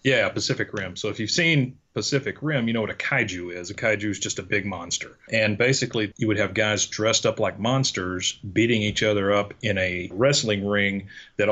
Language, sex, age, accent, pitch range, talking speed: English, male, 40-59, American, 95-110 Hz, 215 wpm